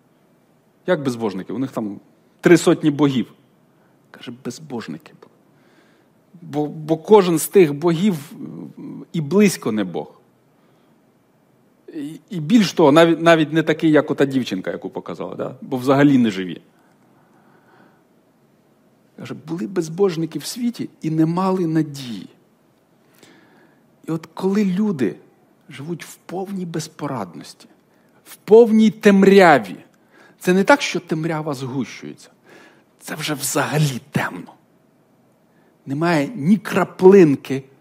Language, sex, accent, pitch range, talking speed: Ukrainian, male, native, 125-180 Hz, 115 wpm